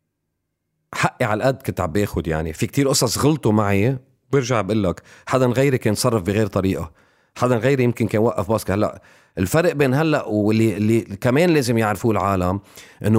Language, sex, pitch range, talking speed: Arabic, male, 100-130 Hz, 160 wpm